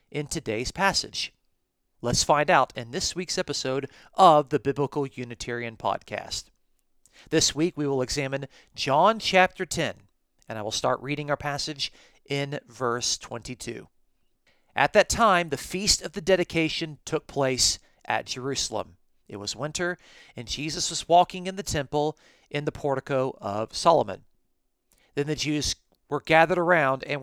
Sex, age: male, 40-59